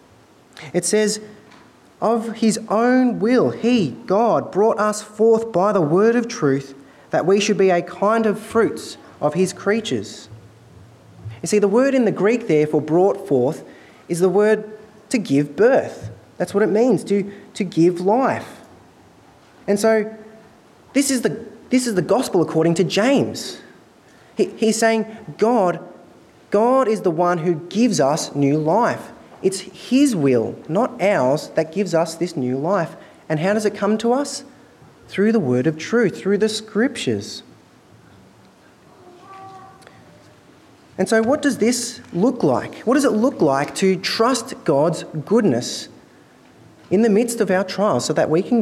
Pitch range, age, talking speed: 160-220 Hz, 20-39, 160 wpm